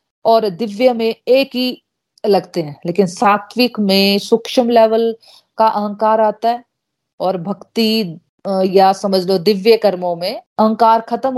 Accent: native